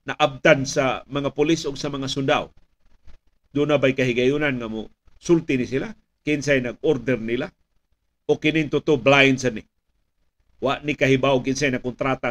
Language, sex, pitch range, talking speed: Filipino, male, 115-150 Hz, 155 wpm